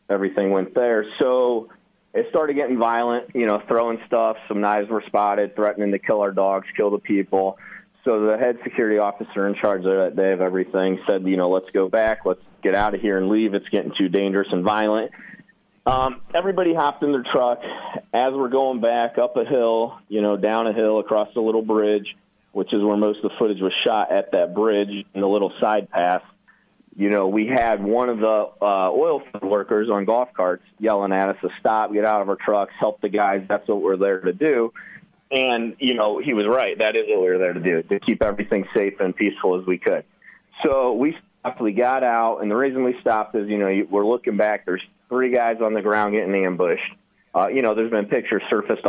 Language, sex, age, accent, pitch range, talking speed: English, male, 30-49, American, 100-115 Hz, 220 wpm